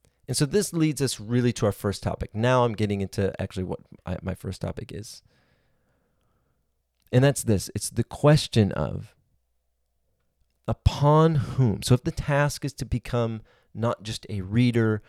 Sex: male